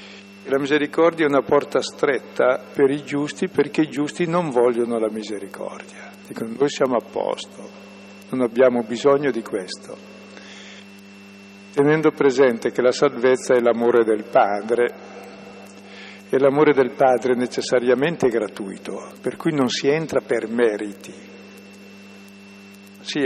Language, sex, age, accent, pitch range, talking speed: Italian, male, 50-69, native, 100-145 Hz, 130 wpm